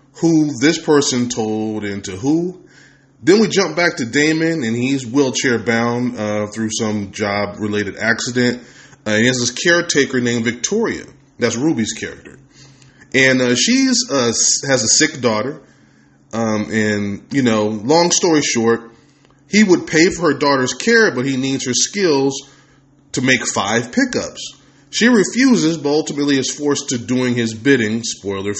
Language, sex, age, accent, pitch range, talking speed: English, male, 20-39, American, 115-145 Hz, 160 wpm